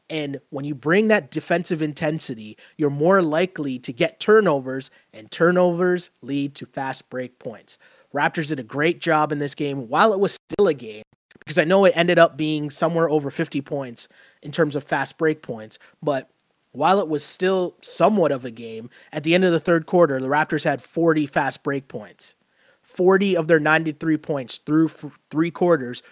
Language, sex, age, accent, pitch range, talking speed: English, male, 30-49, American, 140-170 Hz, 190 wpm